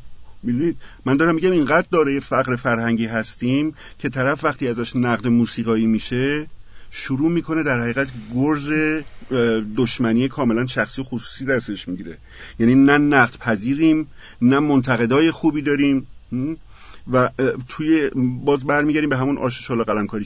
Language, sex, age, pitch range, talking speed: Persian, male, 50-69, 115-135 Hz, 140 wpm